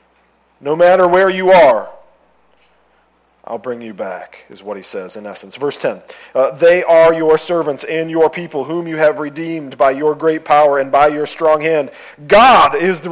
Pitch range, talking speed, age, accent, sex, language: 135-160 Hz, 190 wpm, 40-59, American, male, English